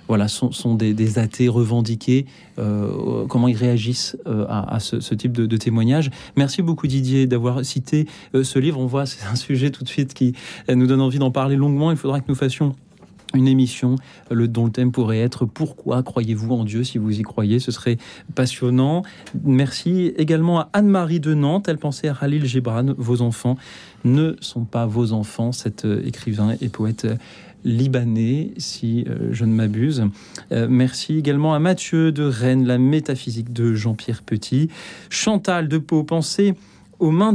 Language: French